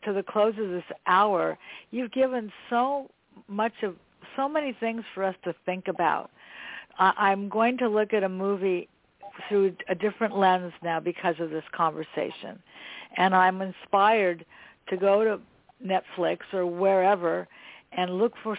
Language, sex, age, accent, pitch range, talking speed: English, female, 60-79, American, 180-215 Hz, 150 wpm